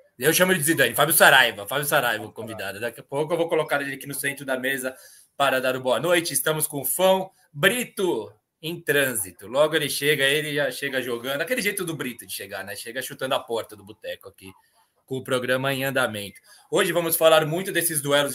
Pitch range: 135-170 Hz